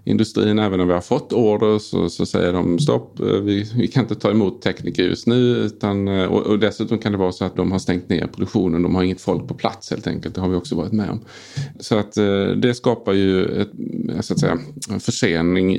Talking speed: 215 wpm